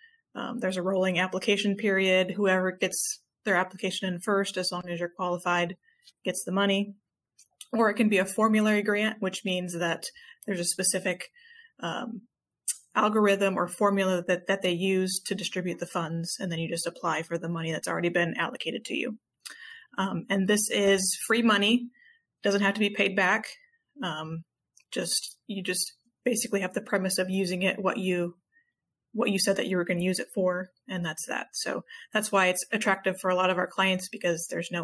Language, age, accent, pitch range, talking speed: English, 20-39, American, 180-215 Hz, 195 wpm